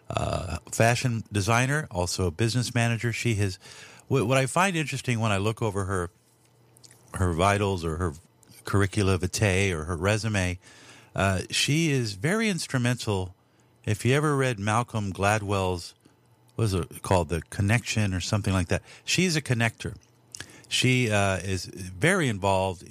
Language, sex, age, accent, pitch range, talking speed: English, male, 50-69, American, 95-115 Hz, 150 wpm